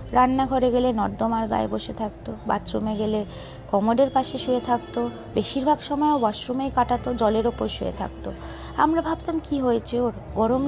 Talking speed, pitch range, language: 145 wpm, 220-280 Hz, English